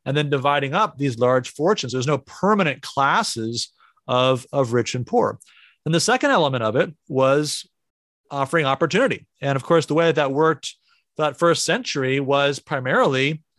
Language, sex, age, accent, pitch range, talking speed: English, male, 30-49, American, 135-170 Hz, 165 wpm